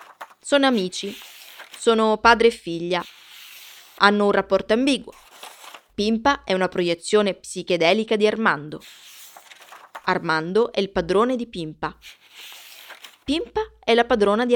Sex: female